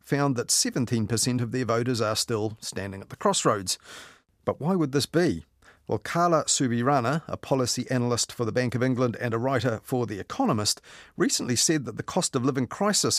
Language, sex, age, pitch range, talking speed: English, male, 40-59, 115-145 Hz, 180 wpm